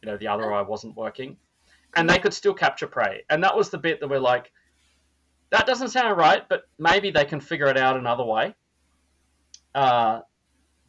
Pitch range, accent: 105-155 Hz, Australian